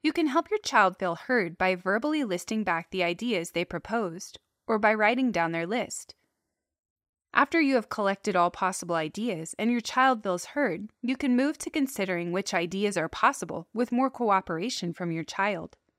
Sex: female